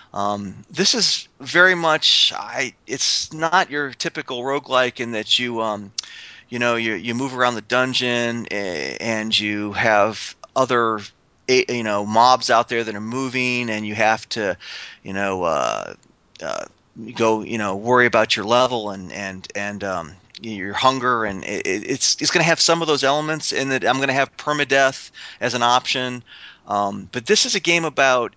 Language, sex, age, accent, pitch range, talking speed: English, male, 30-49, American, 110-135 Hz, 180 wpm